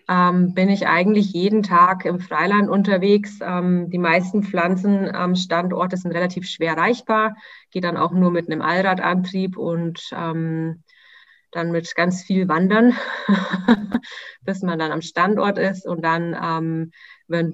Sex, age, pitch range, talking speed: female, 20-39, 165-195 Hz, 150 wpm